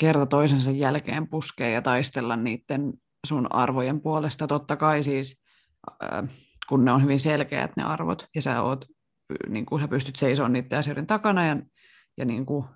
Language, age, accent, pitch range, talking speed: Finnish, 30-49, native, 130-155 Hz, 155 wpm